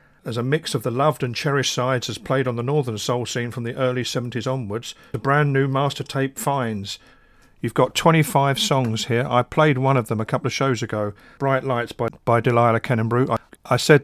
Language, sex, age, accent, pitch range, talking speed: English, male, 50-69, British, 115-140 Hz, 220 wpm